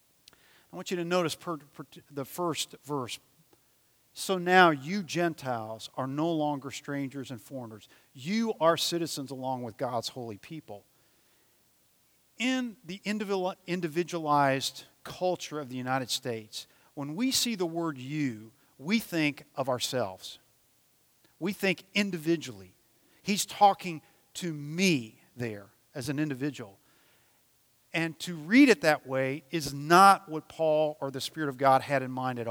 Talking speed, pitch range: 135 wpm, 130-180 Hz